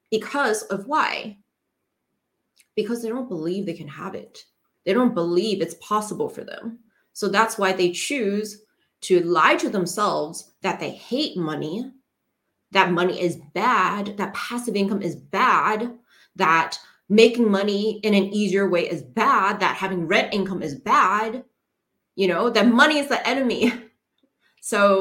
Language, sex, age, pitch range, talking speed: English, female, 20-39, 190-245 Hz, 150 wpm